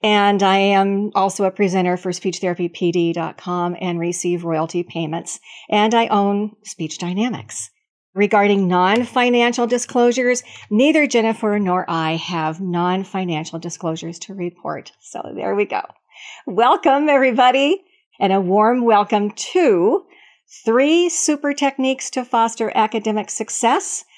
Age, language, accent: 50-69, English, American